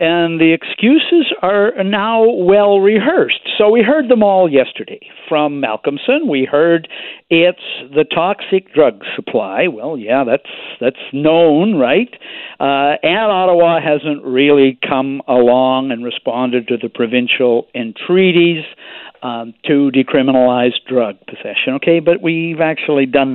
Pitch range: 135-200 Hz